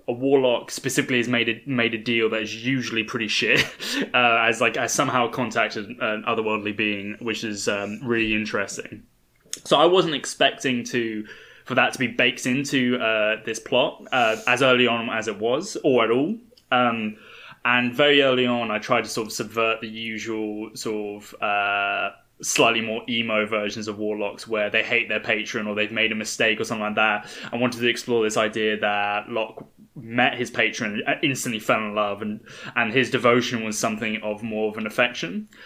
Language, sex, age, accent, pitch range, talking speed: English, male, 10-29, British, 110-125 Hz, 195 wpm